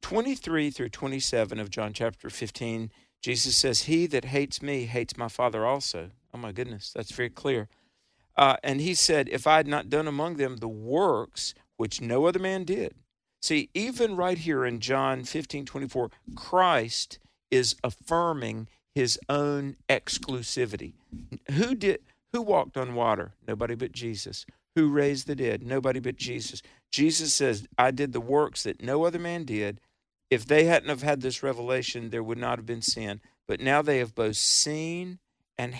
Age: 50-69